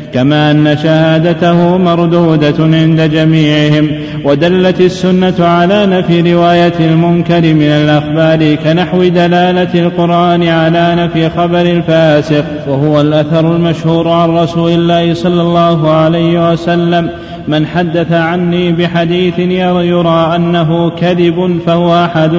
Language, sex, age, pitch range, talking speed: Arabic, male, 30-49, 160-175 Hz, 110 wpm